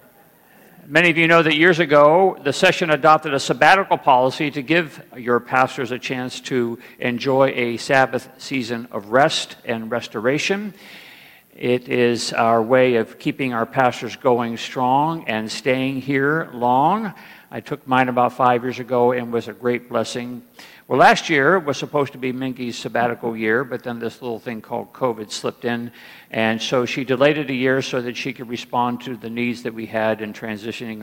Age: 50-69